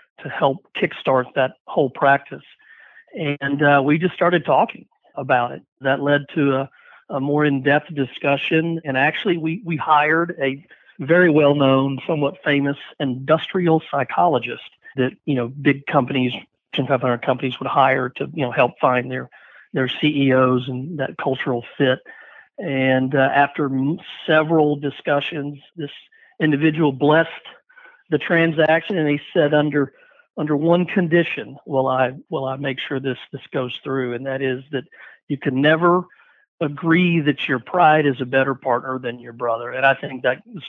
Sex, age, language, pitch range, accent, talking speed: male, 50-69, English, 135-160 Hz, American, 155 wpm